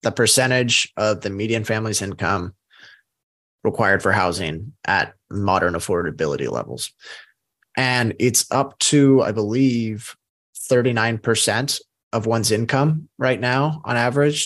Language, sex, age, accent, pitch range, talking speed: English, male, 20-39, American, 110-135 Hz, 115 wpm